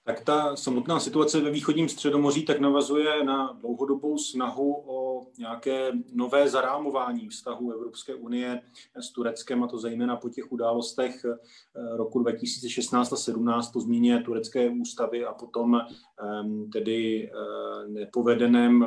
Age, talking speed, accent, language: 30-49, 120 wpm, native, Czech